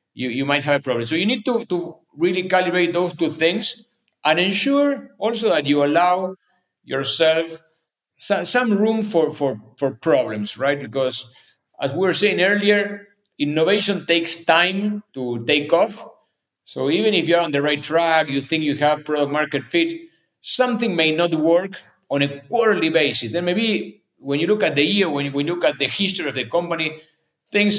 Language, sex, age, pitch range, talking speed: English, male, 50-69, 145-185 Hz, 180 wpm